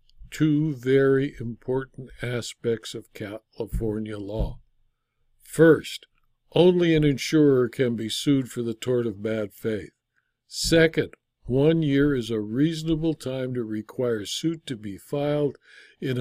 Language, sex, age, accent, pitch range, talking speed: English, male, 60-79, American, 115-155 Hz, 125 wpm